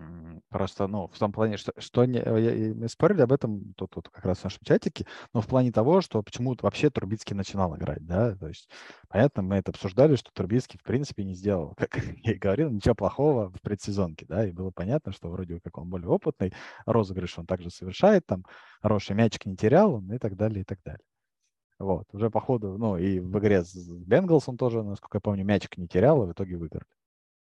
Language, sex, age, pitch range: Russian, male, 20-39, 95-115 Hz